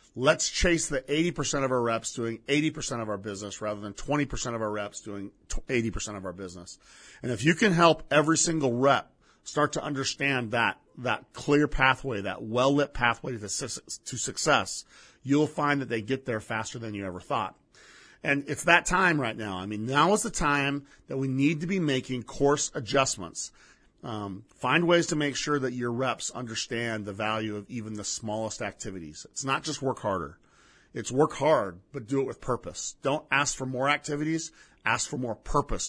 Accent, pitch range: American, 110-145 Hz